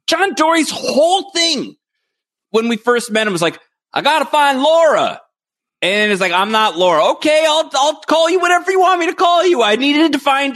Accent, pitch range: American, 175-275 Hz